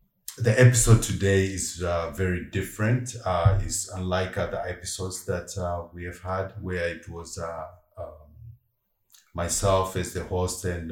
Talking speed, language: 150 wpm, English